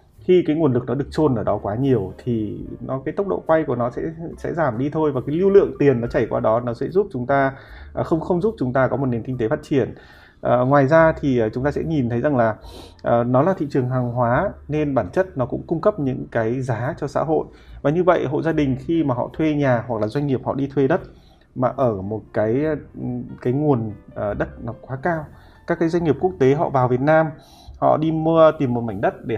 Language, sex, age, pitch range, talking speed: Vietnamese, male, 20-39, 120-155 Hz, 260 wpm